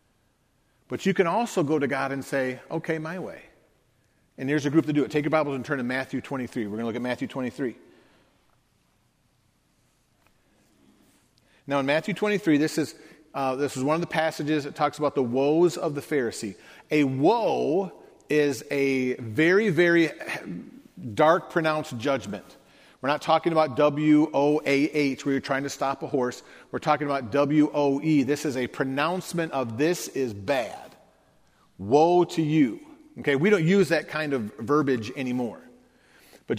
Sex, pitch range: male, 135-160 Hz